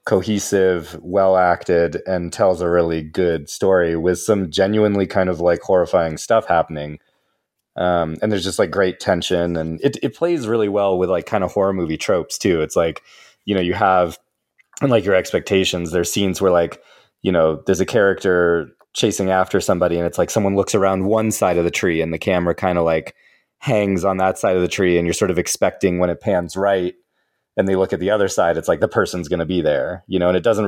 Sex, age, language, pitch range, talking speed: male, 30-49, English, 85-95 Hz, 220 wpm